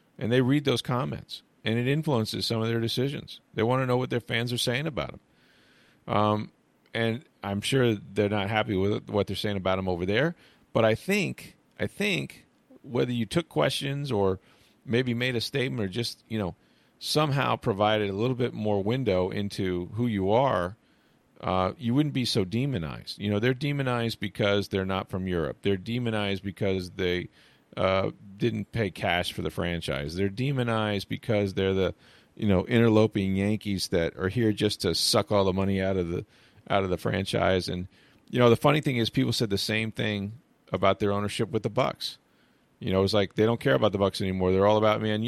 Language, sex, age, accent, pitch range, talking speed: English, male, 40-59, American, 100-120 Hz, 200 wpm